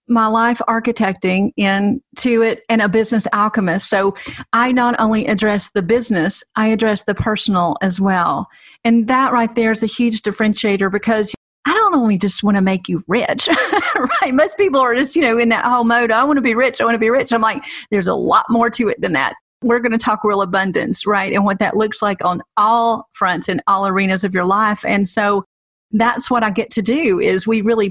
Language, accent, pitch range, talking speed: English, American, 210-245 Hz, 220 wpm